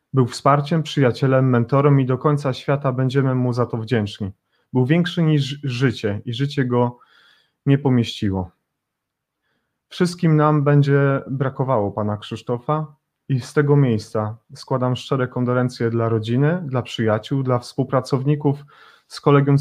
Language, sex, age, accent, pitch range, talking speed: Polish, male, 30-49, native, 120-145 Hz, 130 wpm